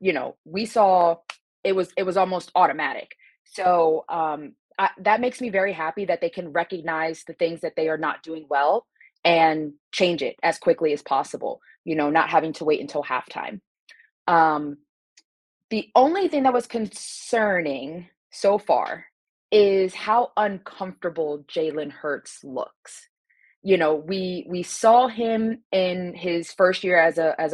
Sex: female